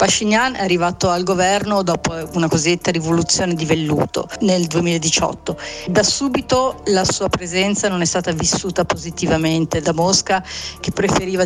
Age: 40-59